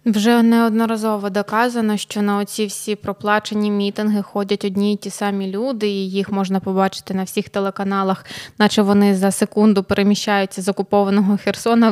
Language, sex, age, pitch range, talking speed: Ukrainian, female, 20-39, 195-225 Hz, 150 wpm